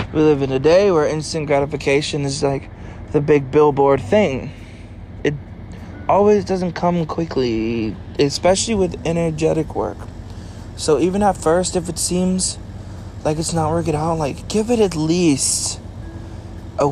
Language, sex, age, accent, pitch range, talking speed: English, male, 20-39, American, 100-150 Hz, 140 wpm